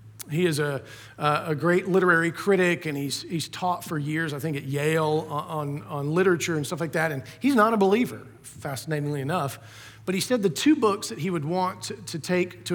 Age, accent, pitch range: 40-59, American, 125-170 Hz